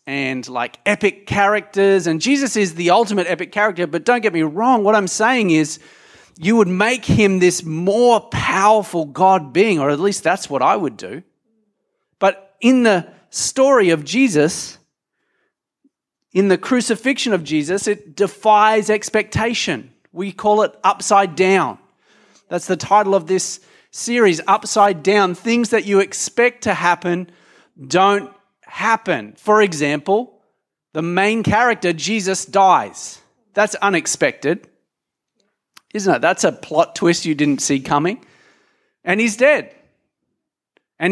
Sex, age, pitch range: male, 30-49, 170-220 Hz